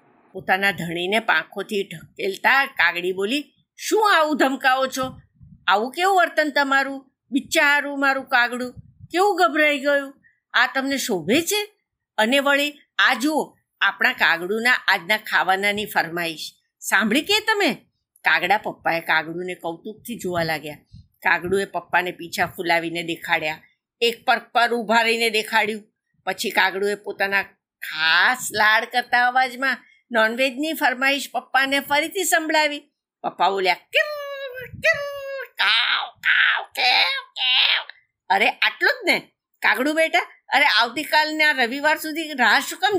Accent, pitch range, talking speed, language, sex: native, 195-295 Hz, 40 wpm, Gujarati, female